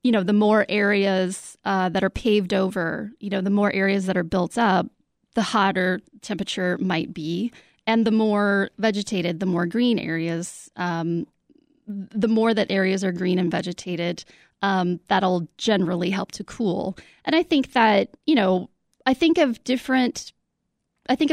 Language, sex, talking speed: English, female, 165 wpm